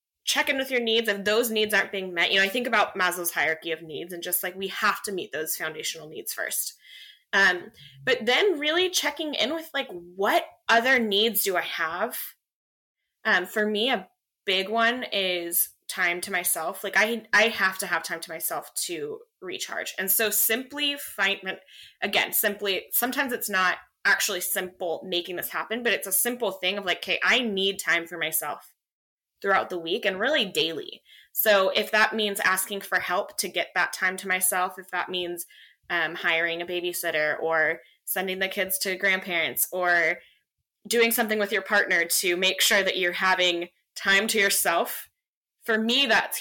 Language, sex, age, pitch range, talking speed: English, female, 20-39, 180-225 Hz, 185 wpm